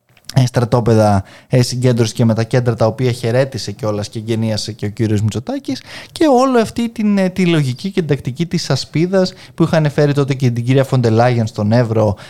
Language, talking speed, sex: Greek, 185 wpm, male